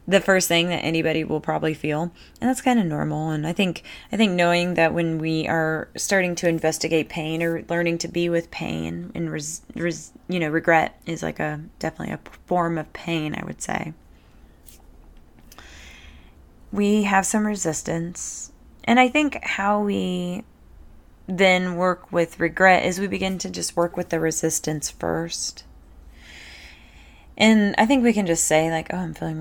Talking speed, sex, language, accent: 170 wpm, female, English, American